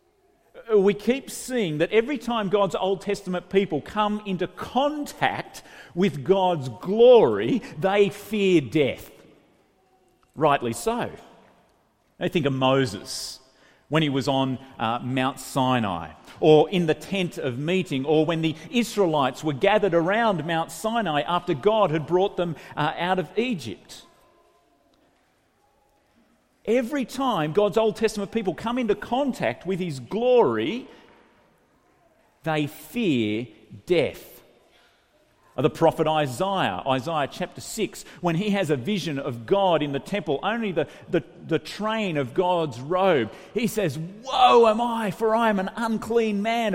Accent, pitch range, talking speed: Australian, 155-220 Hz, 135 wpm